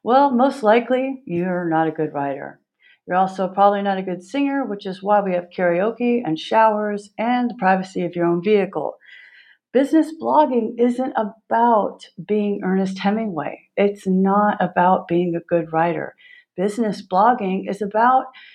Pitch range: 180-235 Hz